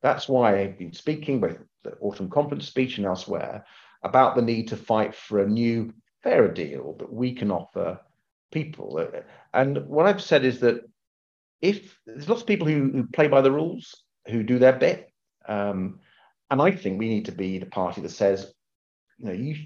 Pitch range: 105-135 Hz